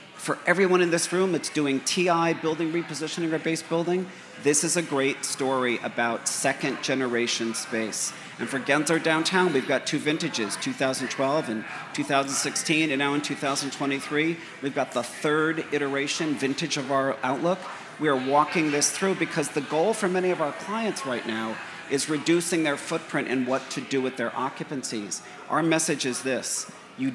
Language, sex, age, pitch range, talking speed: English, male, 40-59, 130-160 Hz, 170 wpm